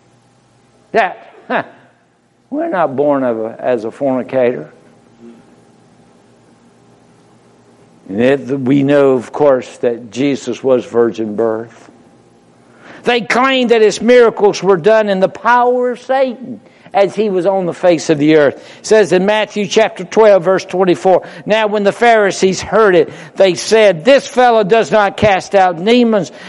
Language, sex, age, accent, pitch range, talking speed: English, male, 60-79, American, 145-220 Hz, 145 wpm